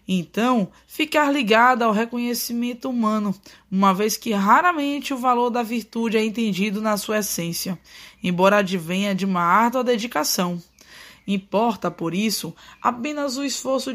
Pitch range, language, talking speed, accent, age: 190-240 Hz, Portuguese, 135 wpm, Brazilian, 20-39